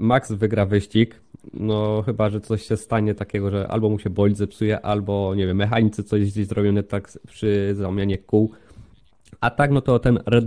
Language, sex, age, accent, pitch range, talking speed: Polish, male, 20-39, native, 105-125 Hz, 190 wpm